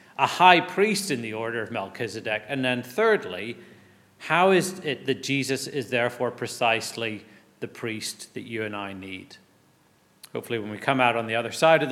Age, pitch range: 40-59, 125-160 Hz